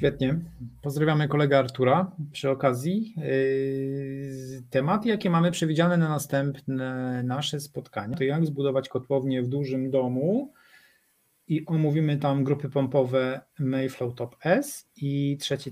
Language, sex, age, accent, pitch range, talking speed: Polish, male, 40-59, native, 130-155 Hz, 120 wpm